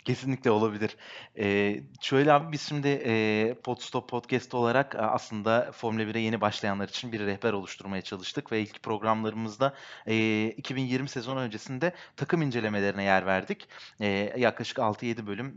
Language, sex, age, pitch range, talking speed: Turkish, male, 30-49, 110-145 Hz, 140 wpm